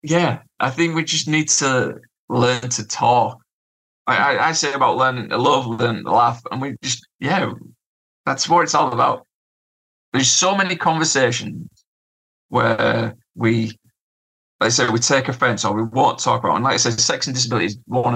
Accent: British